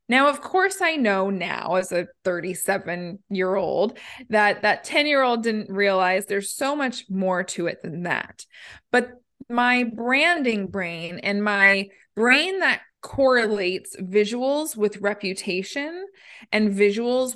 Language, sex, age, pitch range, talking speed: English, female, 20-39, 195-255 Hz, 125 wpm